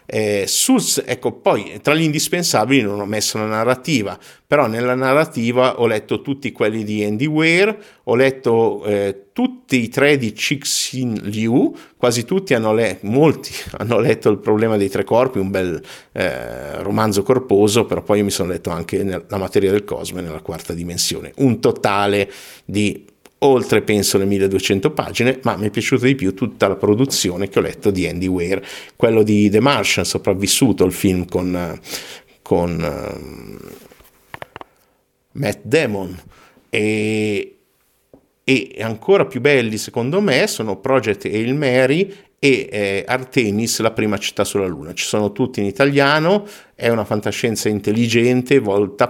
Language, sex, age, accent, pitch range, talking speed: Italian, male, 50-69, native, 100-130 Hz, 155 wpm